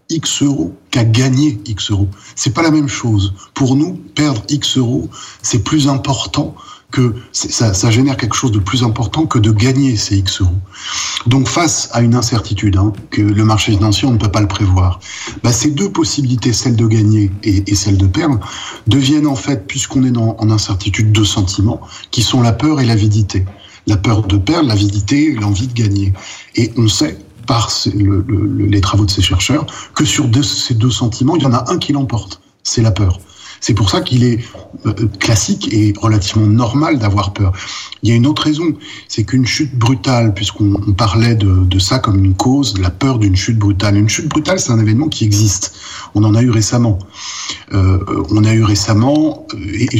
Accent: French